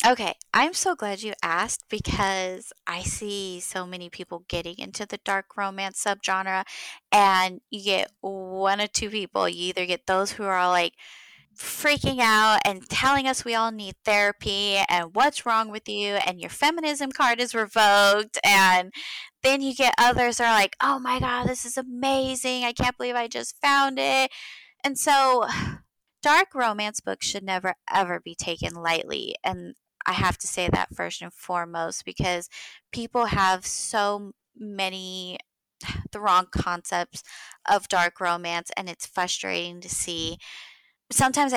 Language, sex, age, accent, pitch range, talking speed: English, female, 20-39, American, 175-230 Hz, 160 wpm